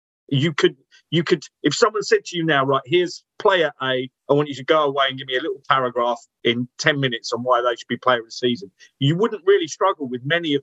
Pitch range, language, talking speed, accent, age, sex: 130-215 Hz, English, 255 wpm, British, 40-59, male